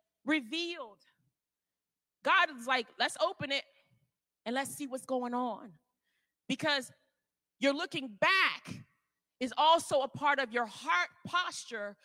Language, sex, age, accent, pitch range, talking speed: English, female, 30-49, American, 240-310 Hz, 125 wpm